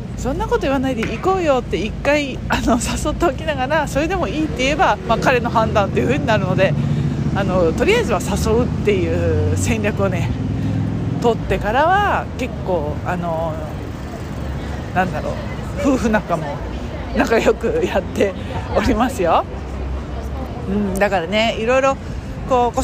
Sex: female